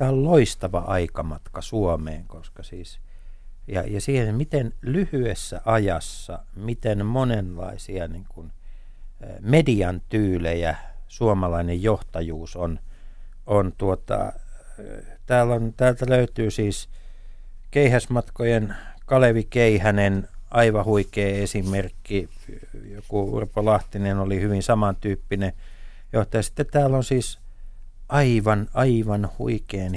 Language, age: Finnish, 60-79